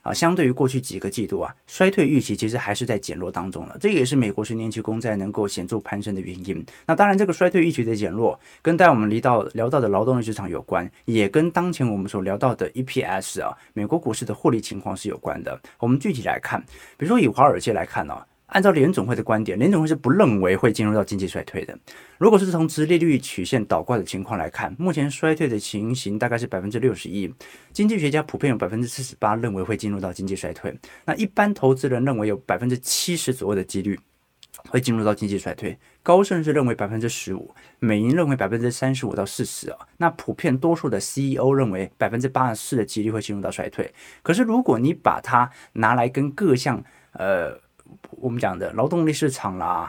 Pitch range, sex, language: 105-150 Hz, male, Chinese